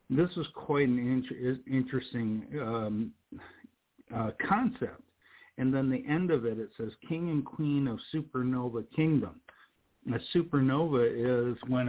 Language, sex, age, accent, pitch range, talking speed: English, male, 50-69, American, 115-140 Hz, 135 wpm